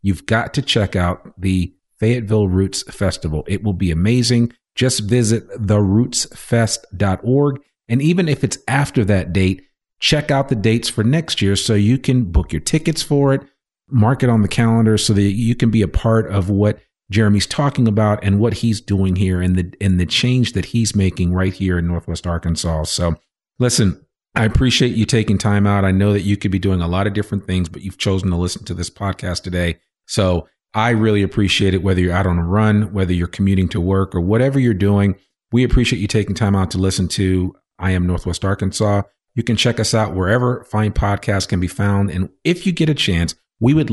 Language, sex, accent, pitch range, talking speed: English, male, American, 95-120 Hz, 210 wpm